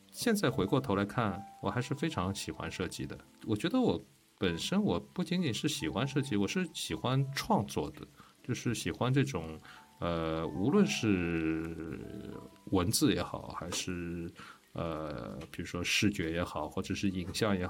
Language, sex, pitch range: Chinese, male, 85-110 Hz